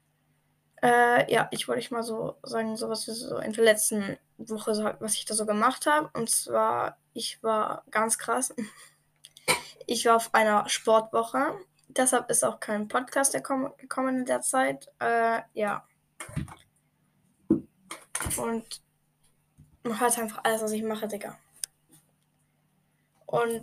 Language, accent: German, German